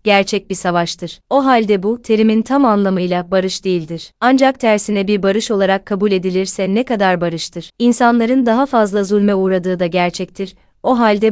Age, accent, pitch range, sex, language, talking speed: 30-49, native, 185-225 Hz, female, Turkish, 160 wpm